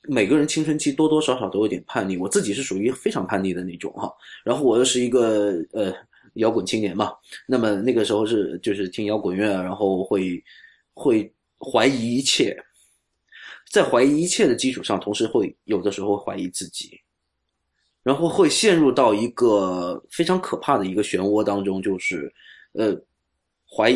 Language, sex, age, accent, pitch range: Chinese, male, 20-39, native, 95-135 Hz